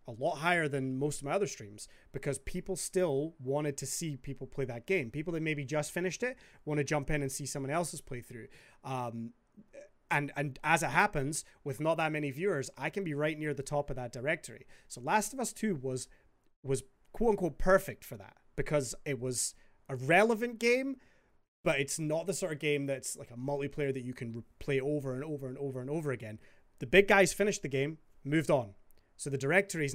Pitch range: 135-170 Hz